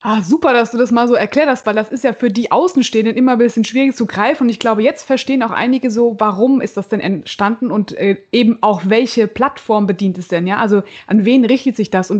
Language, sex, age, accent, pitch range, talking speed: German, female, 20-39, German, 210-260 Hz, 255 wpm